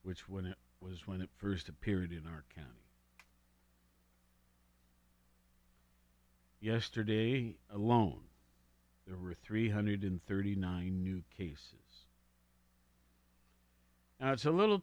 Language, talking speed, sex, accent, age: English, 90 wpm, male, American, 50-69